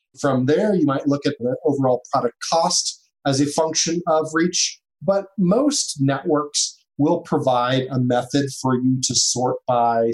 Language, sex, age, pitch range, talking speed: English, male, 30-49, 135-165 Hz, 160 wpm